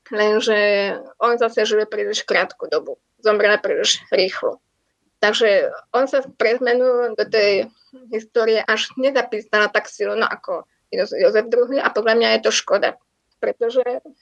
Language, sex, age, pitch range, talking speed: Slovak, female, 20-39, 215-305 Hz, 135 wpm